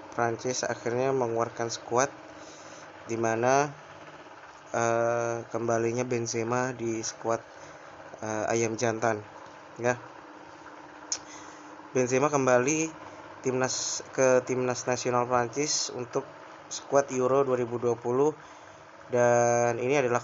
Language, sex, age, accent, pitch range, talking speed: Indonesian, male, 20-39, native, 115-130 Hz, 85 wpm